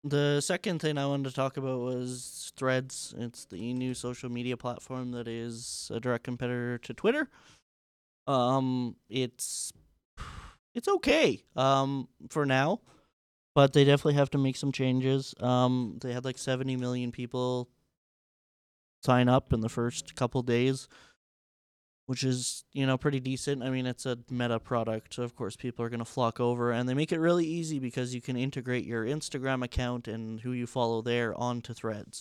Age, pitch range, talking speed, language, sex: 20-39, 120-135 Hz, 175 wpm, English, male